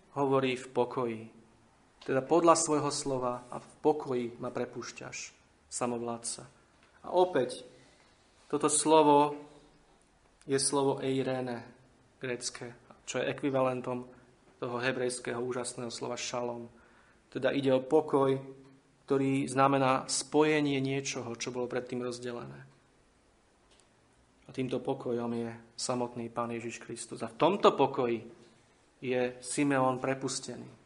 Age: 30-49